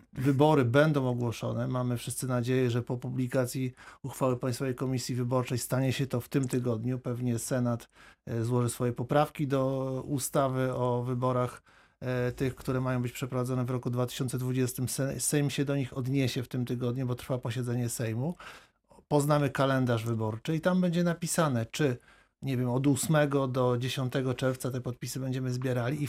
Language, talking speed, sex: Polish, 150 wpm, male